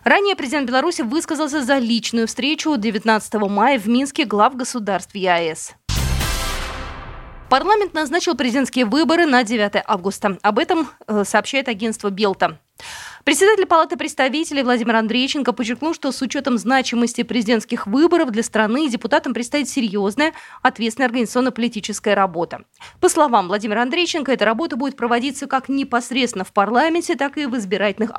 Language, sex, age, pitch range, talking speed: Russian, female, 20-39, 215-290 Hz, 130 wpm